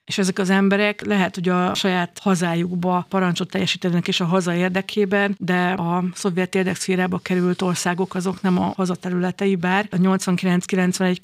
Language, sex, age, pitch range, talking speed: Hungarian, female, 50-69, 175-190 Hz, 150 wpm